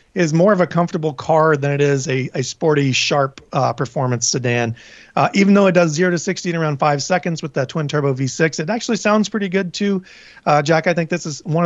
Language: English